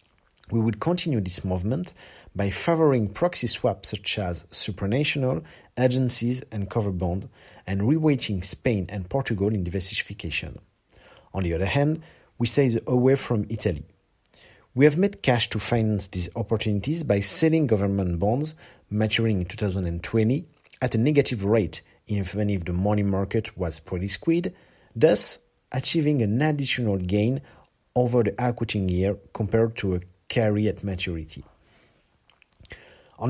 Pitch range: 95-130 Hz